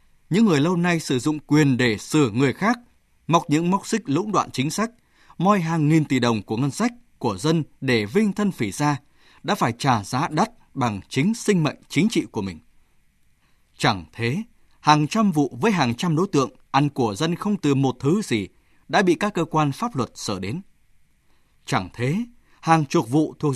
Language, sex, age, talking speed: Vietnamese, male, 20-39, 205 wpm